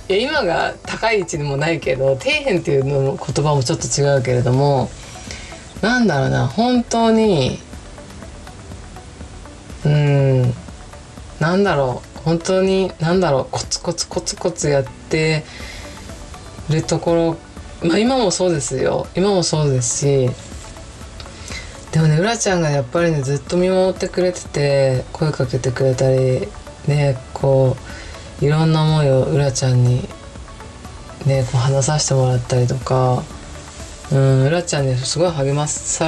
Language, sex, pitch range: Japanese, female, 125-165 Hz